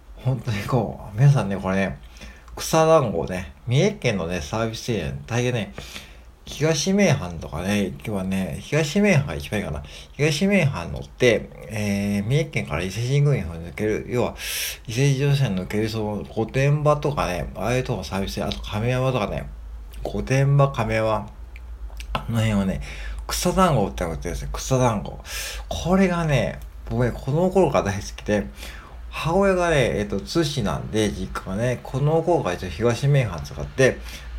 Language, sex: Japanese, male